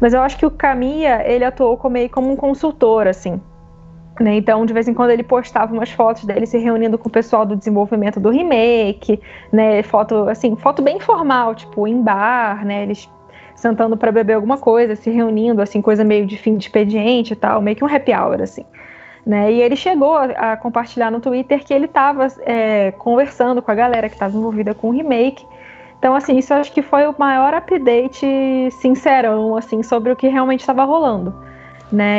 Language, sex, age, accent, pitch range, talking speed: Portuguese, female, 20-39, Brazilian, 220-265 Hz, 200 wpm